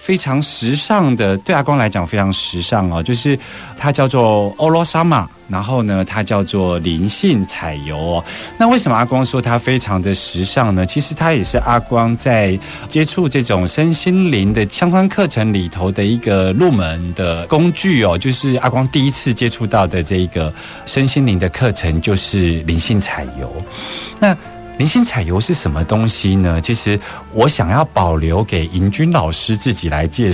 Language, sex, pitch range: Chinese, male, 95-140 Hz